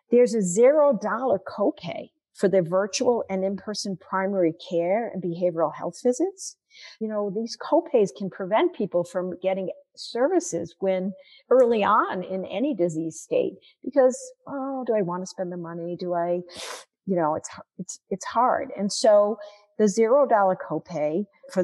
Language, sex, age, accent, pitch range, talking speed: English, female, 50-69, American, 185-255 Hz, 160 wpm